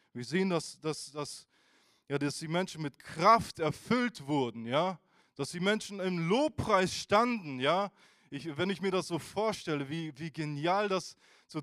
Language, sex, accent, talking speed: German, male, German, 150 wpm